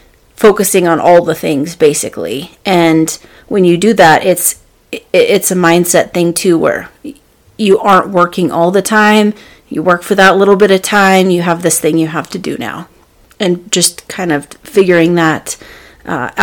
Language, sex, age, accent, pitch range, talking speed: English, female, 30-49, American, 175-200 Hz, 175 wpm